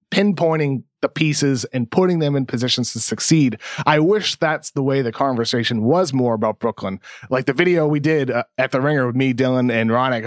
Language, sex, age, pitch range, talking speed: English, male, 30-49, 130-170 Hz, 200 wpm